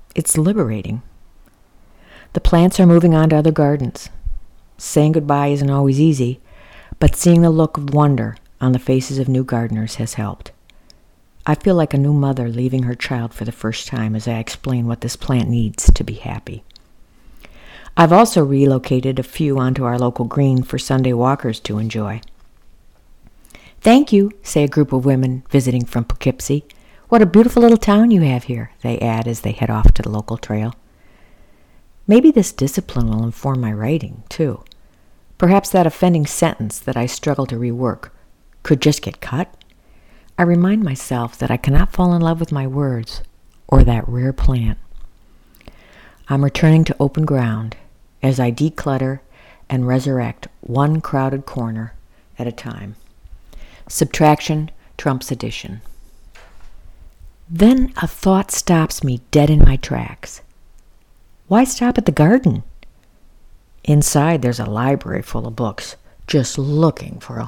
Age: 60-79